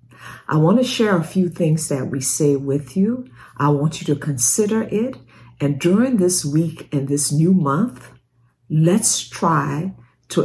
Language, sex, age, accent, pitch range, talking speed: English, female, 60-79, American, 135-185 Hz, 165 wpm